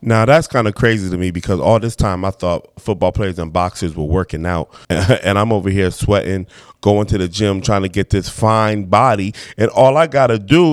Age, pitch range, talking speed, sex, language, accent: 20-39, 100-140 Hz, 230 wpm, male, English, American